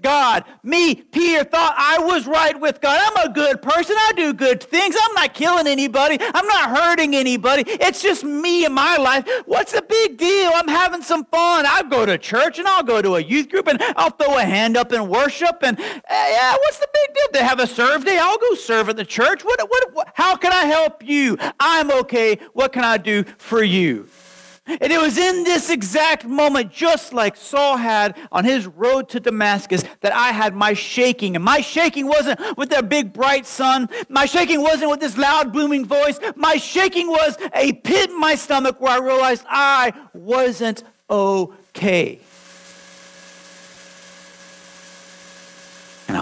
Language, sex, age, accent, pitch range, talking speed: English, male, 40-59, American, 245-330 Hz, 185 wpm